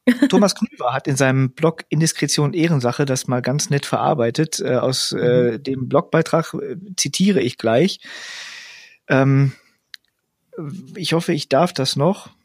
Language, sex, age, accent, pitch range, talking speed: German, male, 40-59, German, 130-160 Hz, 135 wpm